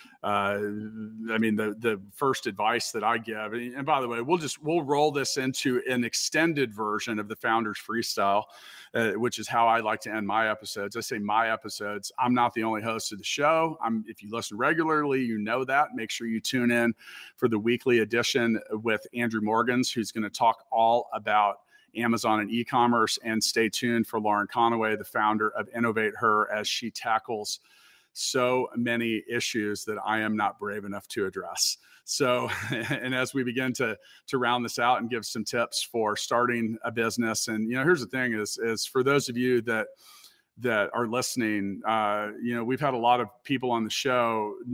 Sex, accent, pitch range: male, American, 110-125 Hz